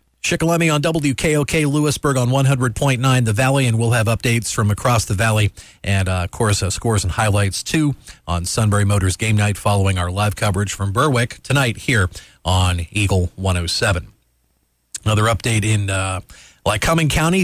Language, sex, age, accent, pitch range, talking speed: English, male, 40-59, American, 95-135 Hz, 160 wpm